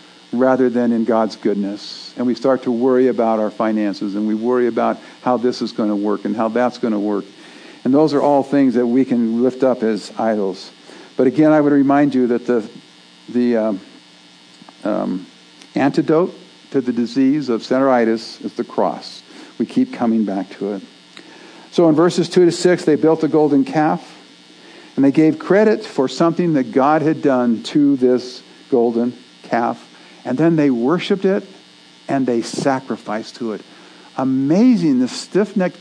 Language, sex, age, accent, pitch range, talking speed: English, male, 50-69, American, 110-155 Hz, 175 wpm